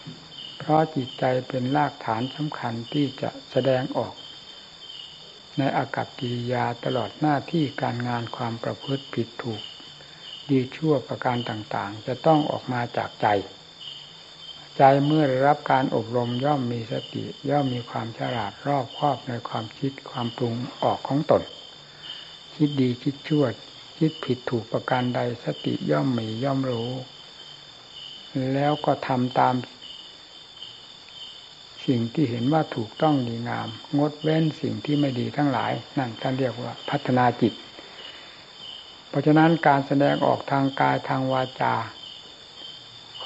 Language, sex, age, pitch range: Thai, male, 60-79, 120-145 Hz